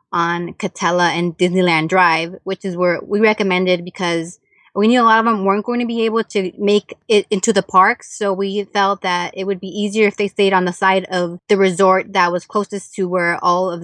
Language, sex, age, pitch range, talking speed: English, female, 20-39, 175-205 Hz, 225 wpm